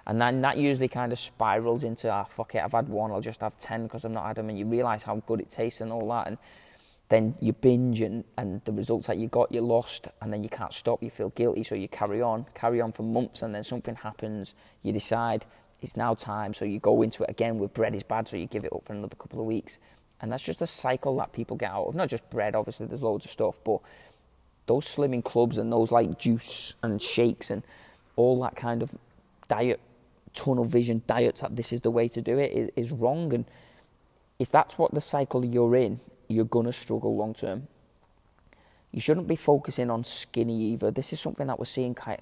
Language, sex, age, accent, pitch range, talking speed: English, male, 20-39, British, 110-125 Hz, 235 wpm